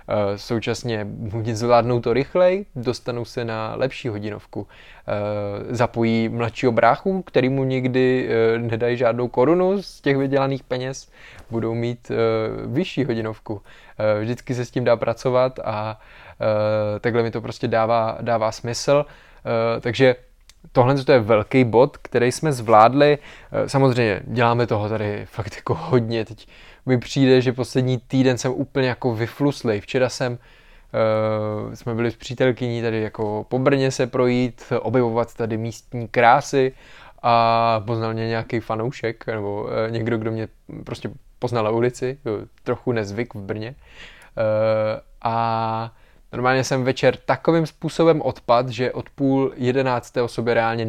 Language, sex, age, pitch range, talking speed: Czech, male, 20-39, 115-130 Hz, 130 wpm